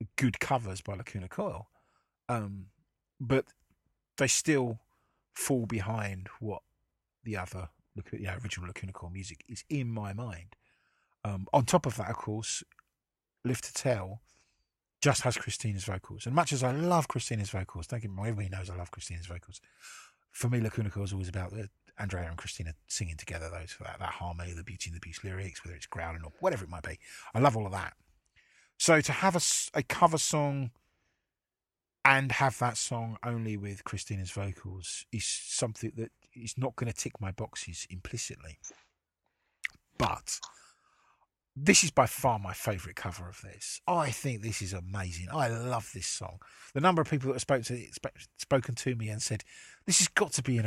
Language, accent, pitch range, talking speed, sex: English, British, 95-125 Hz, 180 wpm, male